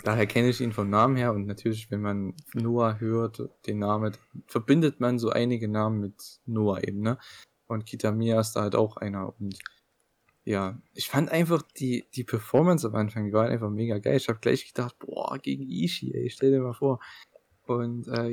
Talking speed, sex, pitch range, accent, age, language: 195 wpm, male, 110-135 Hz, German, 20-39, English